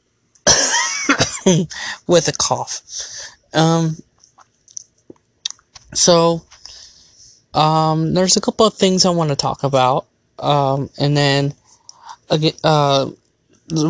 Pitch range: 145-170 Hz